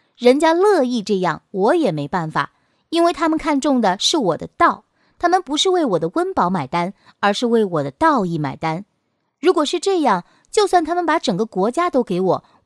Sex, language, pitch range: female, Chinese, 185-310 Hz